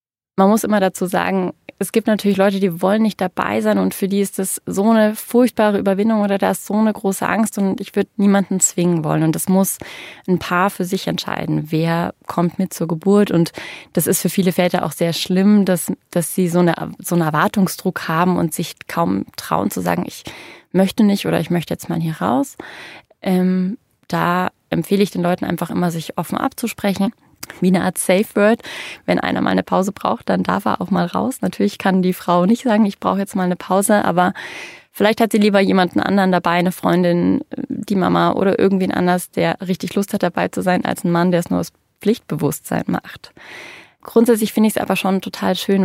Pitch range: 175-205 Hz